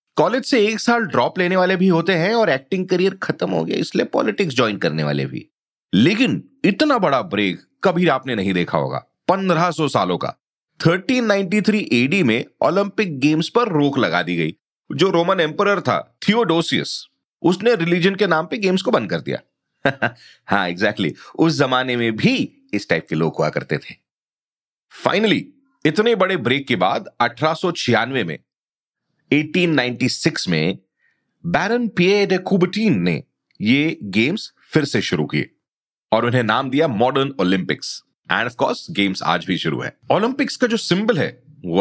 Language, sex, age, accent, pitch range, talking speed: Hindi, male, 40-59, native, 125-200 Hz, 160 wpm